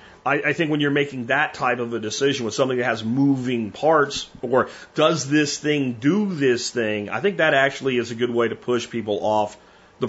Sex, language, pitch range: male, English, 125-190 Hz